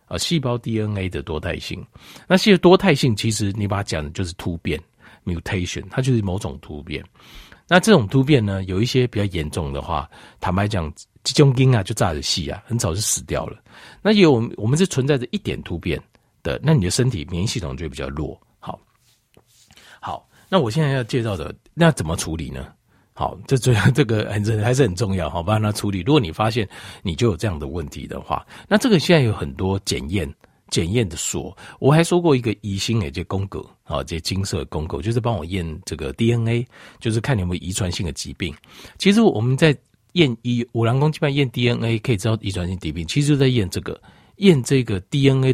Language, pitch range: Chinese, 90-130 Hz